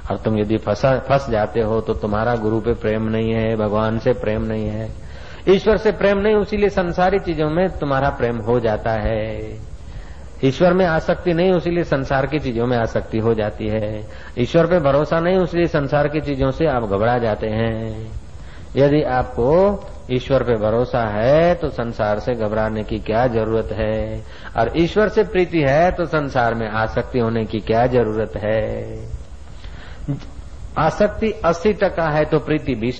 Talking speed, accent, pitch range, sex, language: 170 wpm, native, 110-165 Hz, male, Hindi